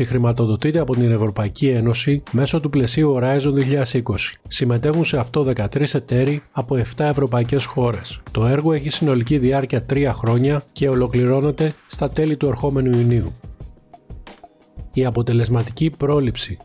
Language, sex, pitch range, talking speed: Greek, male, 120-145 Hz, 130 wpm